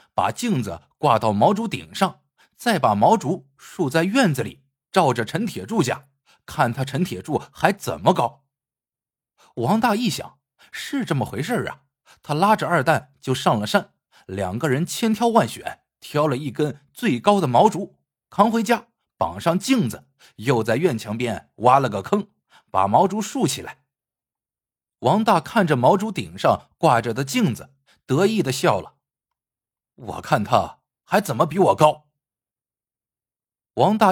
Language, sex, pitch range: Chinese, male, 130-200 Hz